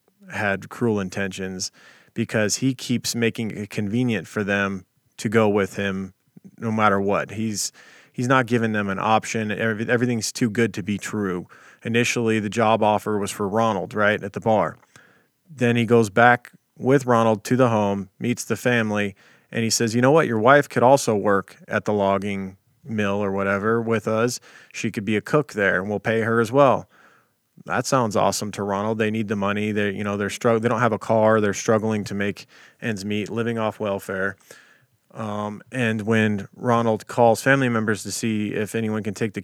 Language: English